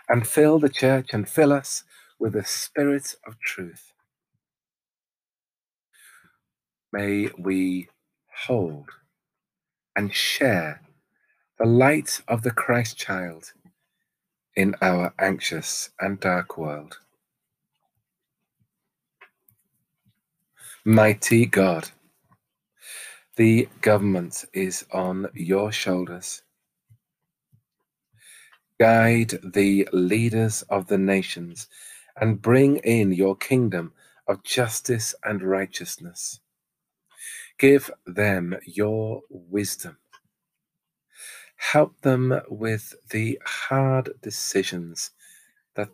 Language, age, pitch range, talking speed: English, 40-59, 95-125 Hz, 80 wpm